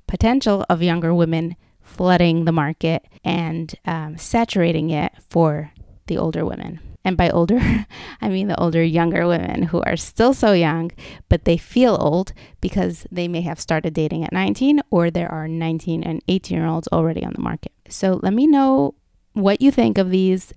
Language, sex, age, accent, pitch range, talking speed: English, female, 20-39, American, 165-205 Hz, 180 wpm